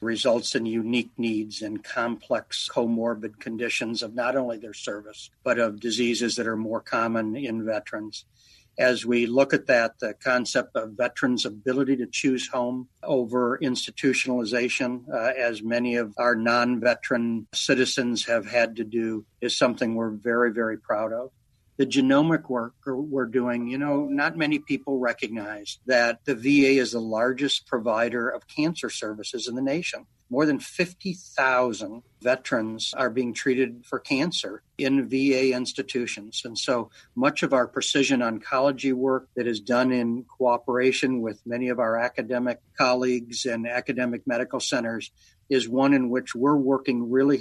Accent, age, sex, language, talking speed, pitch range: American, 60-79, male, English, 155 wpm, 115-130 Hz